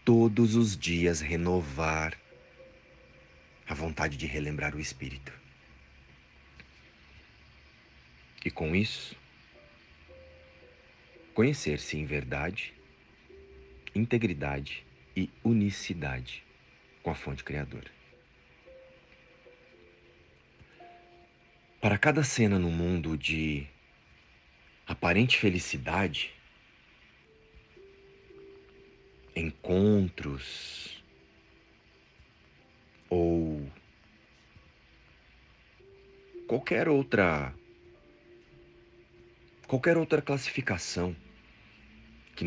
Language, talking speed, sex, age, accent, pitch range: Portuguese, 55 wpm, male, 50-69, Brazilian, 65-100 Hz